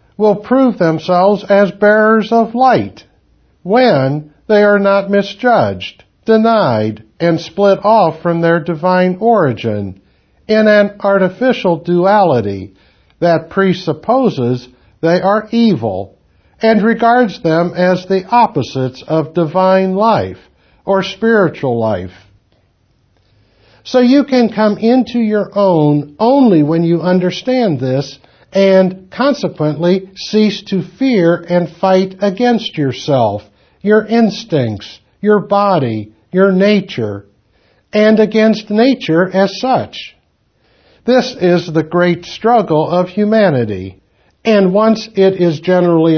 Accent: American